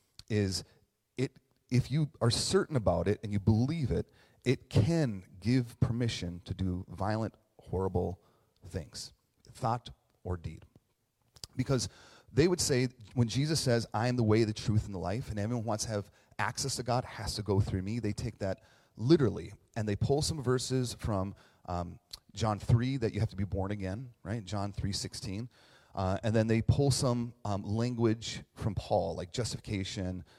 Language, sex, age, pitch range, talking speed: English, male, 30-49, 100-125 Hz, 175 wpm